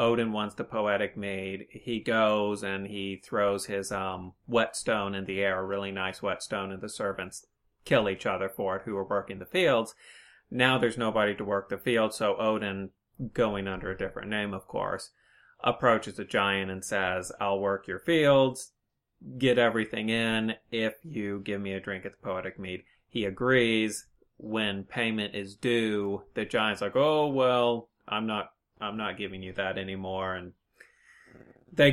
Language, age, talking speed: English, 30-49, 175 wpm